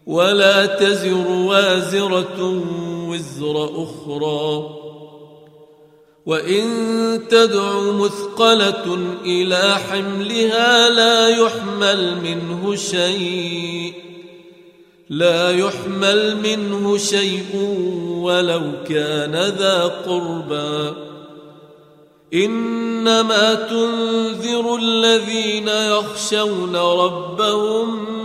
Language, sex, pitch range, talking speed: Arabic, male, 170-215 Hz, 55 wpm